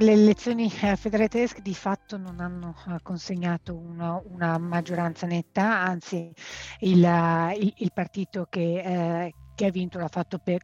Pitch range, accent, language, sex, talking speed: 170-195 Hz, native, Italian, female, 135 wpm